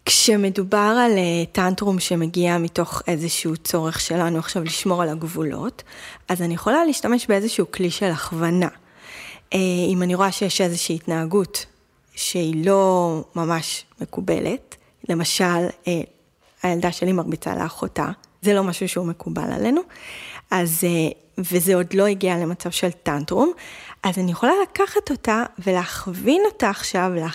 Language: Hebrew